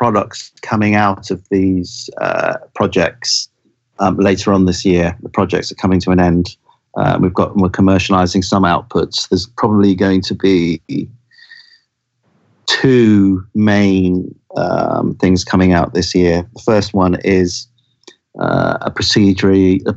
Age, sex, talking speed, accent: 40-59, male, 140 wpm, British